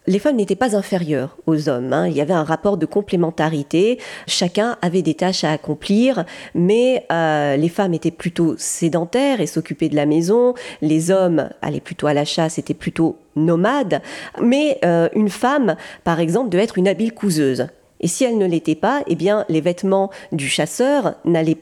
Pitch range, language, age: 160-215 Hz, French, 40-59